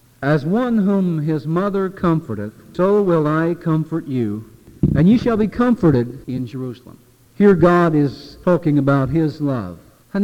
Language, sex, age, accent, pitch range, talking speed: English, male, 50-69, American, 125-180 Hz, 150 wpm